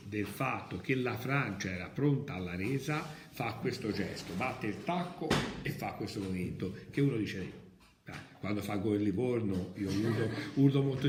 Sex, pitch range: male, 105-145 Hz